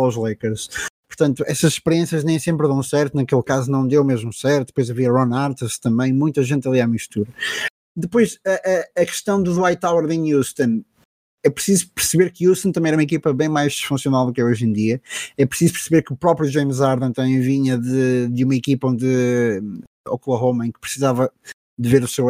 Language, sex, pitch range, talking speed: Portuguese, male, 125-155 Hz, 205 wpm